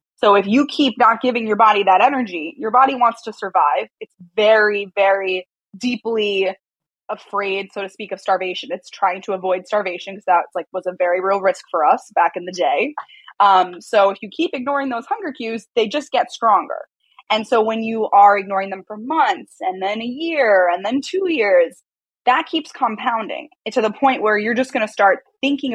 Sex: female